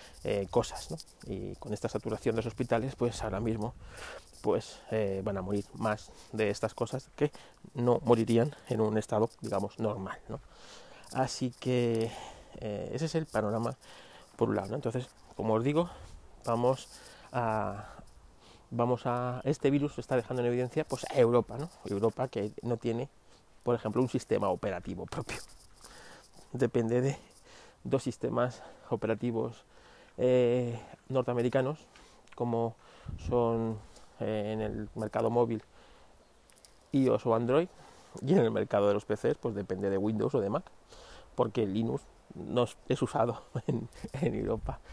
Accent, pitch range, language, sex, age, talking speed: Spanish, 110-125 Hz, Spanish, male, 30-49, 140 wpm